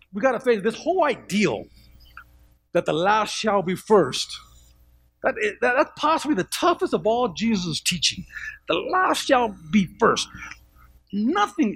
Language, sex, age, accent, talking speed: English, male, 50-69, American, 150 wpm